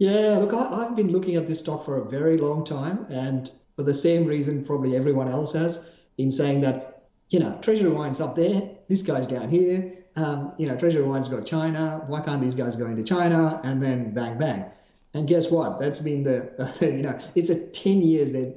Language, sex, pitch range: English, male, 125-160 Hz